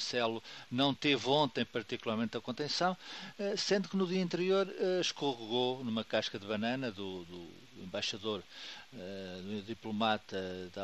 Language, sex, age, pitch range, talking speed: Portuguese, male, 50-69, 110-145 Hz, 125 wpm